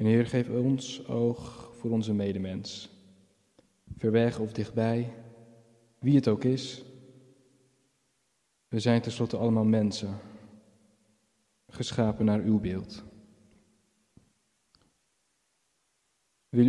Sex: male